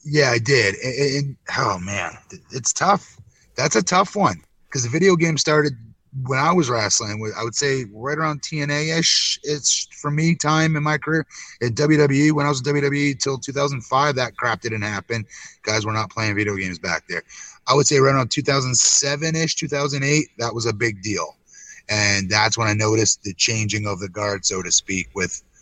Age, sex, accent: 30-49, male, American